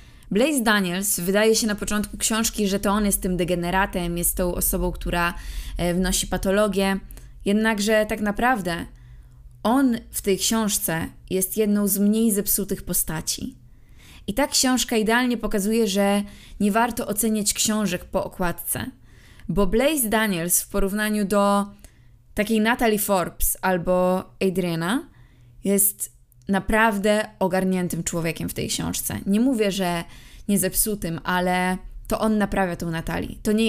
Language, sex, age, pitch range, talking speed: Polish, female, 20-39, 180-215 Hz, 135 wpm